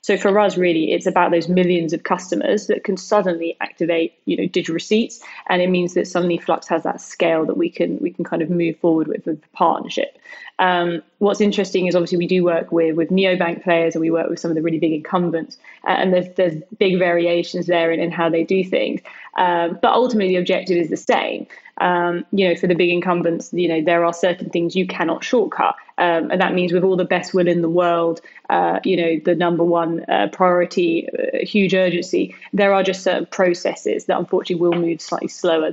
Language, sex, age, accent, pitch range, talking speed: English, female, 20-39, British, 170-185 Hz, 225 wpm